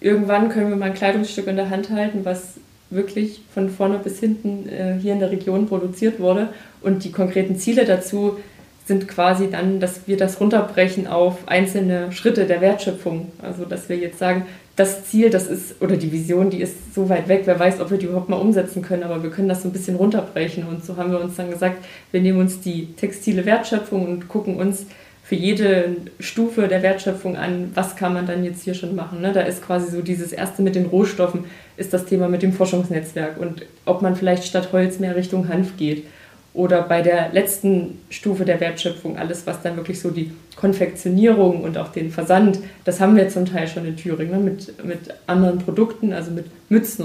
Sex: female